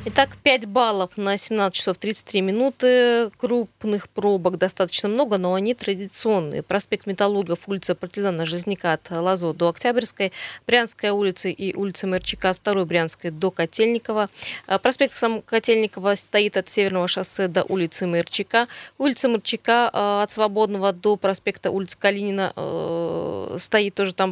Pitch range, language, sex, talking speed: 185-220 Hz, Russian, female, 135 wpm